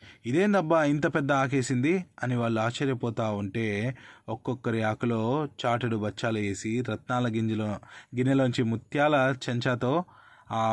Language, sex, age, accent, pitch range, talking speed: Telugu, male, 20-39, native, 115-145 Hz, 110 wpm